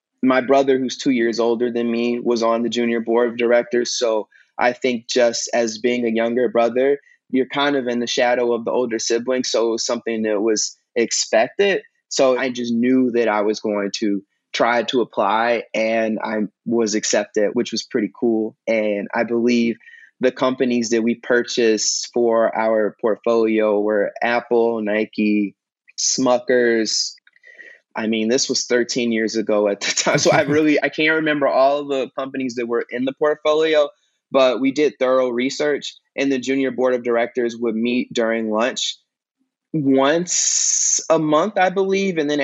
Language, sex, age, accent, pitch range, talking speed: English, male, 20-39, American, 115-135 Hz, 175 wpm